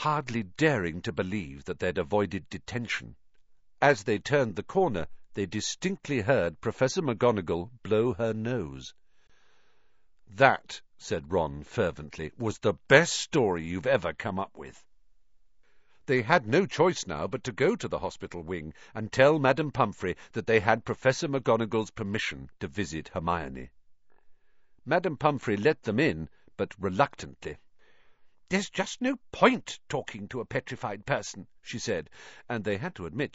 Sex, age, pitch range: male, 50-69, 90-135 Hz